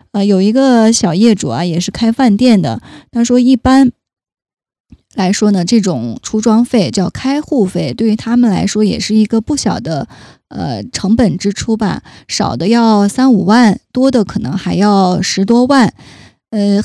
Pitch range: 185-225 Hz